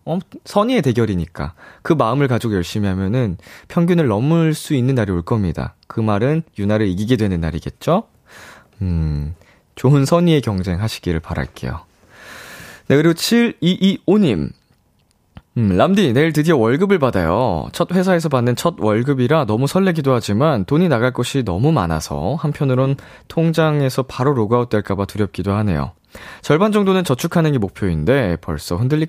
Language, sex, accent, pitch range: Korean, male, native, 95-150 Hz